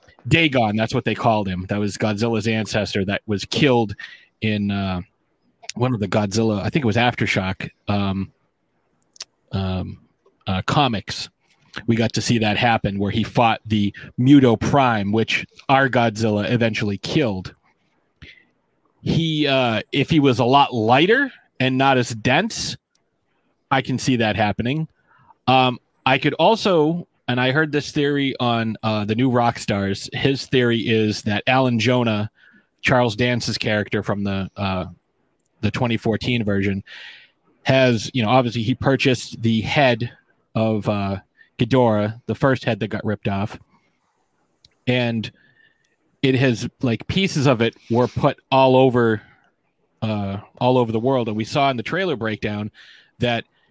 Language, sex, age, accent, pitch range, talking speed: English, male, 30-49, American, 105-130 Hz, 150 wpm